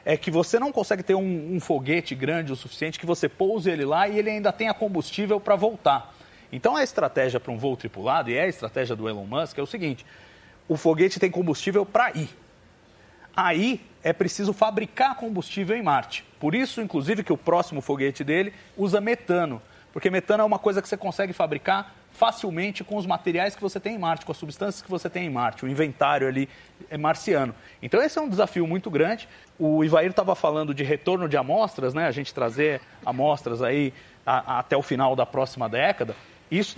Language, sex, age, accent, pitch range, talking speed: Portuguese, male, 40-59, Brazilian, 150-200 Hz, 205 wpm